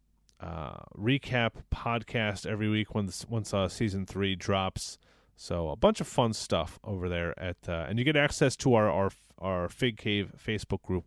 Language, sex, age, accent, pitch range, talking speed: English, male, 30-49, American, 90-105 Hz, 185 wpm